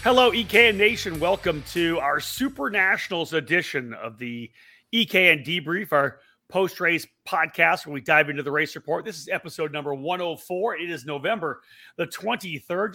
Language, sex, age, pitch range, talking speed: English, male, 30-49, 145-195 Hz, 155 wpm